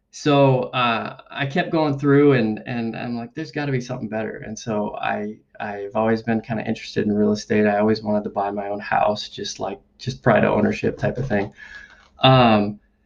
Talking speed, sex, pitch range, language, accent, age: 210 wpm, male, 105-135 Hz, English, American, 20-39